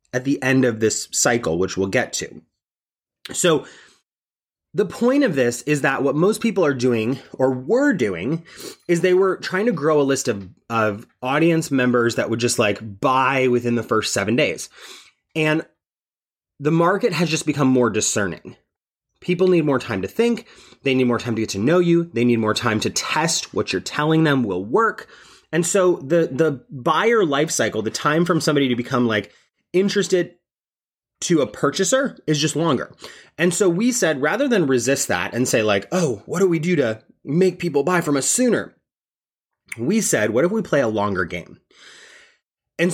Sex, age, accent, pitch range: male, 30-49, American, 125-180 Hz